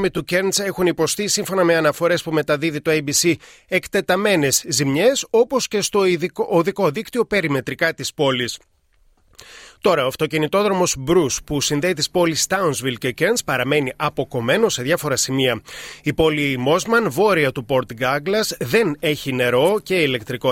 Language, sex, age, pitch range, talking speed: Greek, male, 30-49, 140-185 Hz, 145 wpm